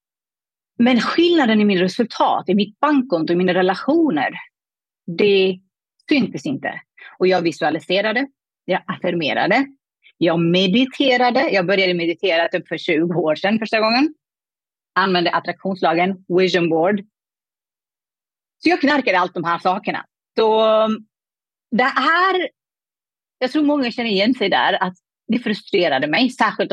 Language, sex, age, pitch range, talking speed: Swedish, female, 30-49, 175-240 Hz, 130 wpm